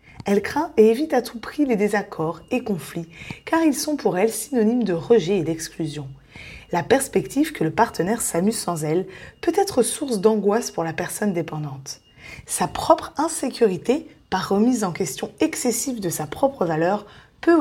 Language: French